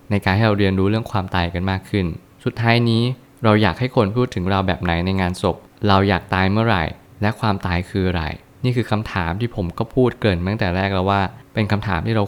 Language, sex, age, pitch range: Thai, male, 20-39, 95-115 Hz